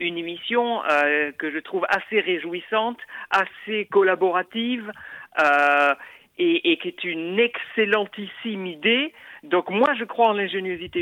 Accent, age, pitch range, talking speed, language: French, 50-69, 190-245 Hz, 130 wpm, French